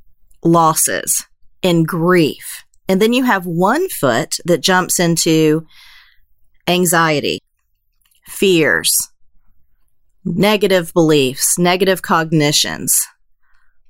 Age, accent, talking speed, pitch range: 40-59, American, 80 wpm, 160-200 Hz